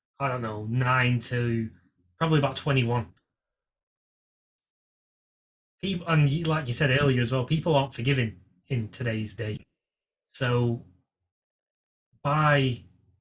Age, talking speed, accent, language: 20-39, 105 wpm, British, English